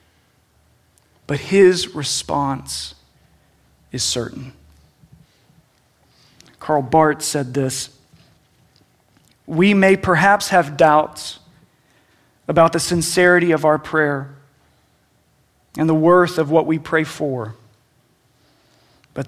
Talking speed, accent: 90 wpm, American